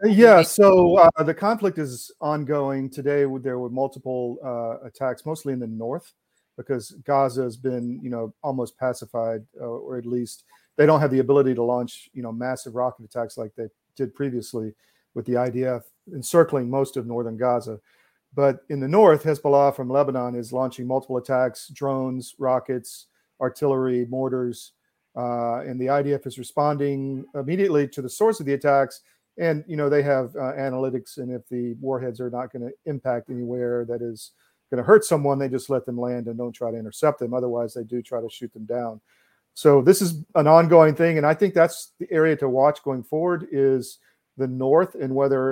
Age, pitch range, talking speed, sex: 40-59, 125-150 Hz, 190 wpm, male